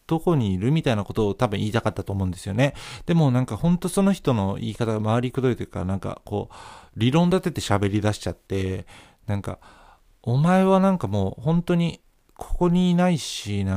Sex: male